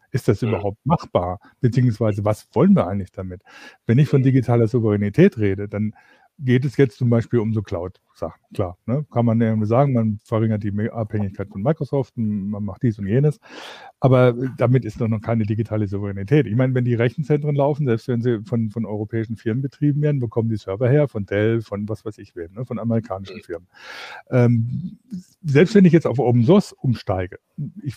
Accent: German